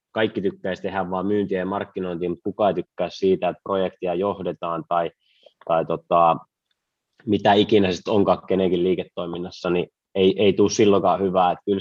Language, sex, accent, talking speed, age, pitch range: Finnish, male, native, 165 wpm, 20-39, 95-110 Hz